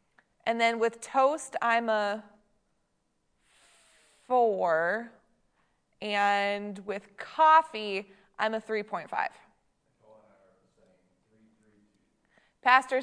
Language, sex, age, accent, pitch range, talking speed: English, female, 20-39, American, 200-250 Hz, 75 wpm